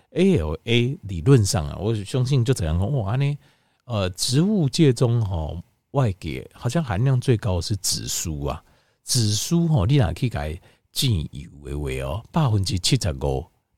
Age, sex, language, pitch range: 50-69, male, Chinese, 80-125 Hz